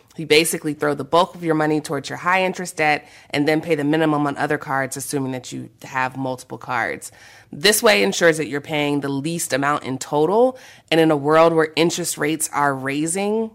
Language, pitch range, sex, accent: English, 140-170 Hz, female, American